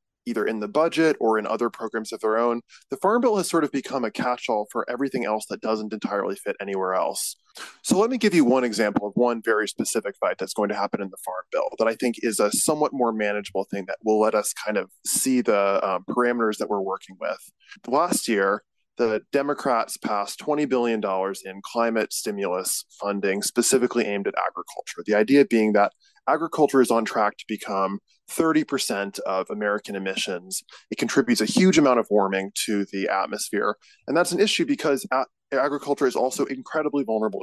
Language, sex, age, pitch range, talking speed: English, male, 20-39, 105-140 Hz, 195 wpm